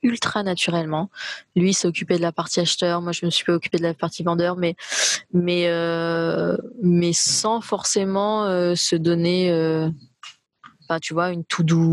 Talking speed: 160 wpm